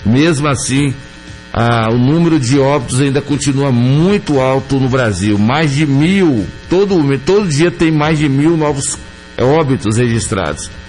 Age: 60-79